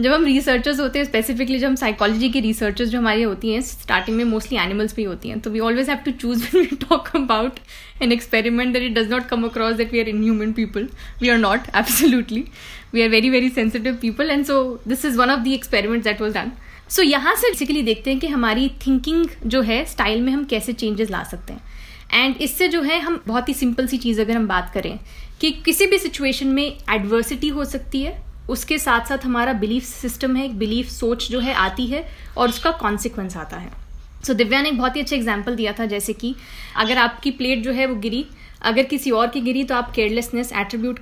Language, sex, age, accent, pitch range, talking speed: Hindi, female, 20-39, native, 225-275 Hz, 230 wpm